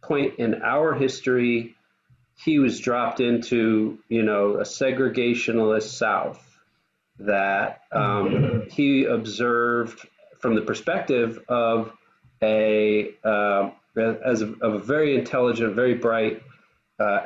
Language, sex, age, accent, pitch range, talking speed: English, male, 40-59, American, 110-140 Hz, 110 wpm